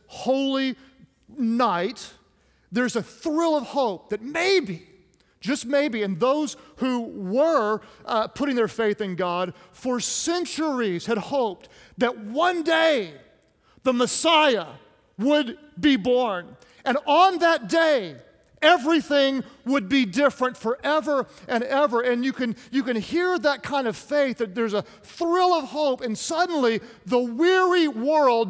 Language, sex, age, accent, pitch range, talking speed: English, male, 40-59, American, 240-300 Hz, 135 wpm